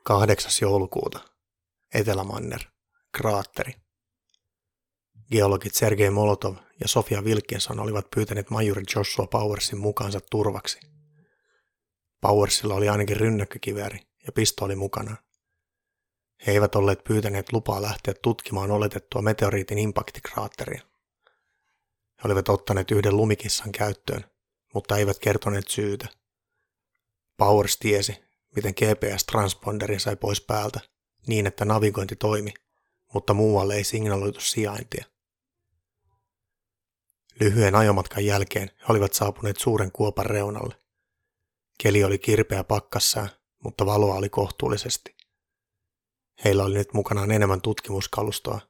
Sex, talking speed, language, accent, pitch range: male, 100 wpm, Finnish, native, 100-110 Hz